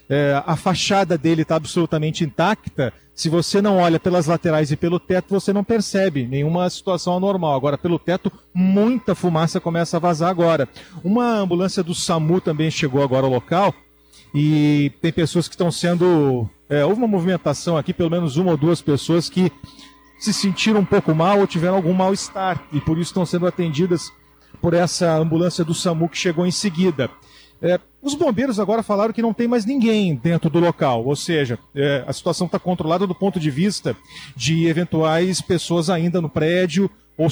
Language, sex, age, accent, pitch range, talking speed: Portuguese, male, 40-59, Brazilian, 155-185 Hz, 180 wpm